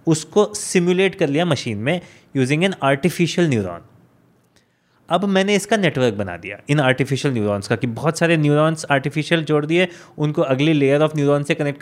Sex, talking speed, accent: male, 175 wpm, native